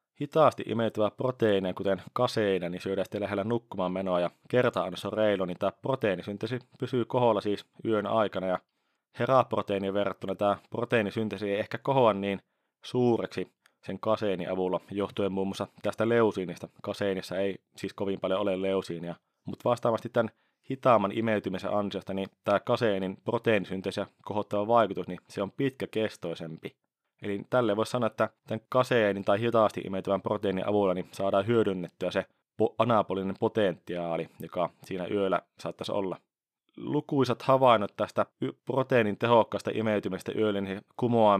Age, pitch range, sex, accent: 30-49, 95-115 Hz, male, native